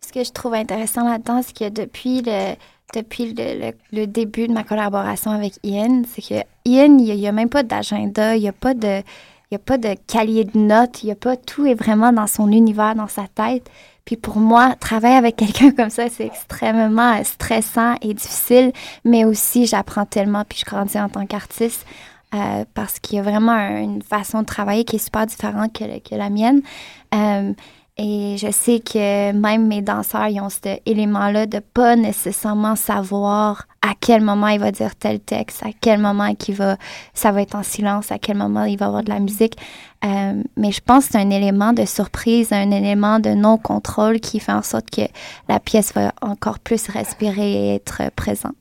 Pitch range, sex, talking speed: 205-230 Hz, female, 200 wpm